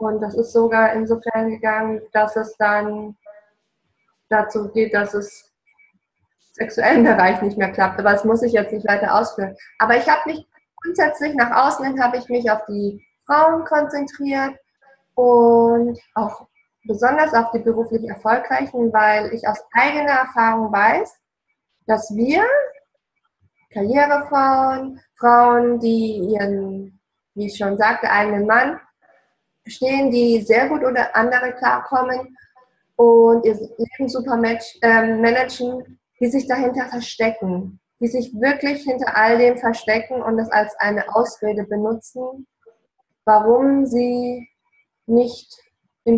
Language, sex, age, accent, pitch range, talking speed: German, female, 20-39, German, 215-255 Hz, 130 wpm